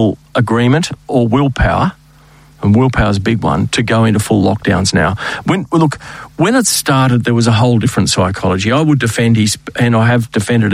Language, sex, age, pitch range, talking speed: English, male, 50-69, 110-140 Hz, 190 wpm